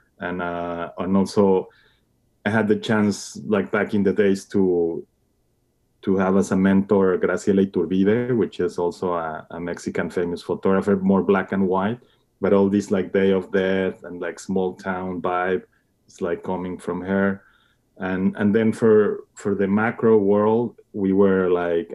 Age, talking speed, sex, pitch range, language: 30-49, 165 wpm, male, 95-100 Hz, English